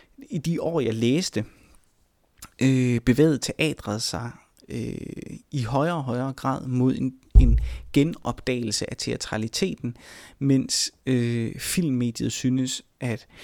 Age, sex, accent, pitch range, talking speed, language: 30-49, male, native, 115-135 Hz, 105 wpm, Danish